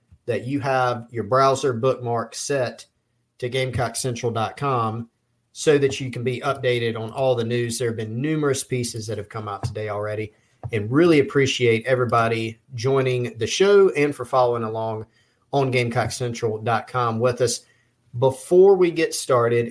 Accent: American